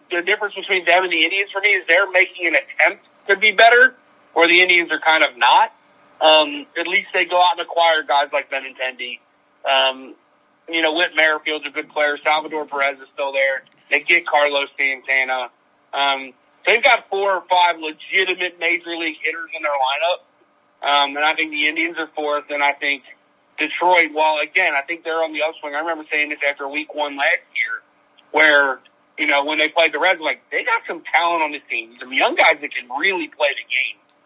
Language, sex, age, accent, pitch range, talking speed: English, male, 40-59, American, 145-180 Hz, 210 wpm